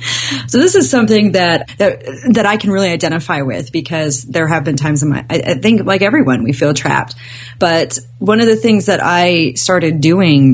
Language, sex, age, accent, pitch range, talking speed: English, female, 30-49, American, 130-185 Hz, 205 wpm